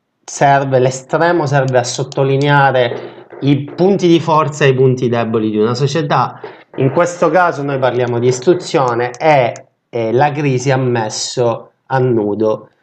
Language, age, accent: Italian, 30-49, native